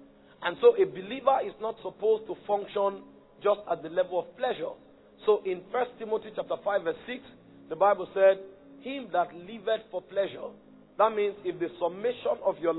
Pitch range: 175-245 Hz